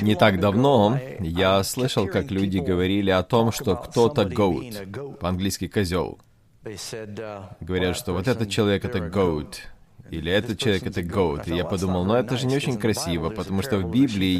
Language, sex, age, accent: Russian, male, 20-39, native